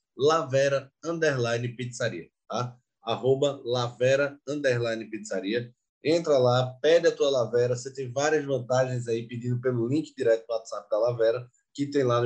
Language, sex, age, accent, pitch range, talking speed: Portuguese, male, 20-39, Brazilian, 120-150 Hz, 150 wpm